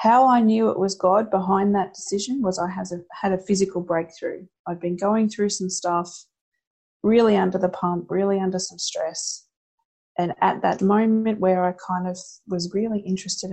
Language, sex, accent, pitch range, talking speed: English, female, Australian, 185-215 Hz, 175 wpm